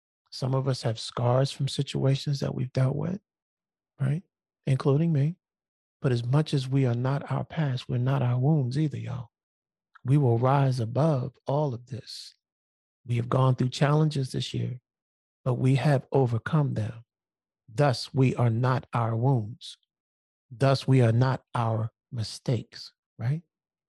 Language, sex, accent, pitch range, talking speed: English, male, American, 120-145 Hz, 155 wpm